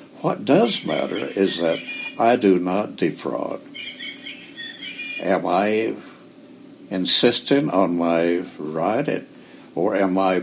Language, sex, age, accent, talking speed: English, male, 60-79, American, 105 wpm